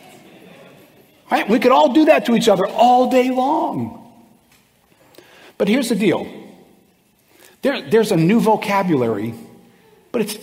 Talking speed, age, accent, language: 120 wpm, 50-69, American, English